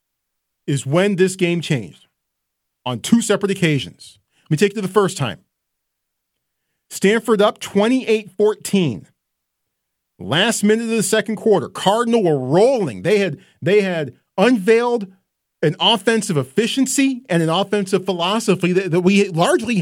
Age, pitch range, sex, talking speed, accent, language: 40-59, 160-220 Hz, male, 135 wpm, American, English